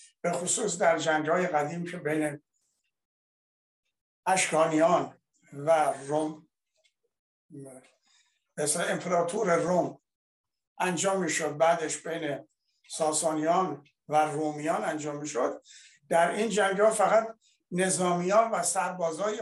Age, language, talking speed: 60-79, Persian, 85 wpm